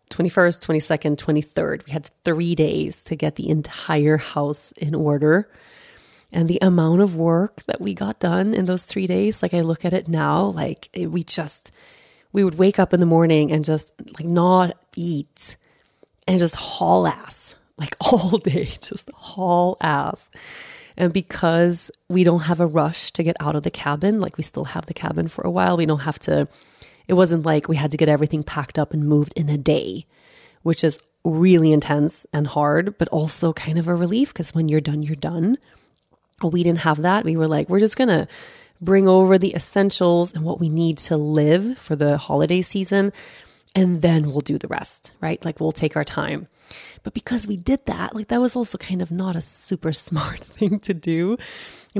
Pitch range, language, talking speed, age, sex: 155-195 Hz, English, 200 wpm, 30-49, female